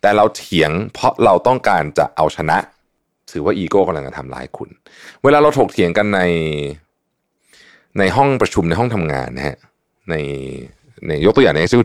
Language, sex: Thai, male